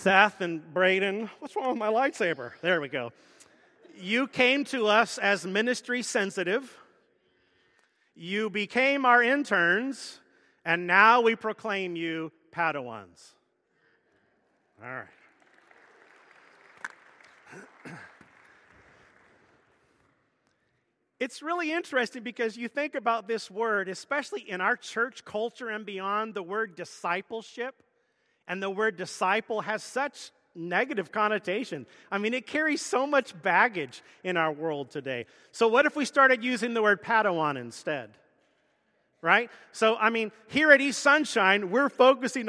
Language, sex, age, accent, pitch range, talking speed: English, male, 40-59, American, 175-250 Hz, 125 wpm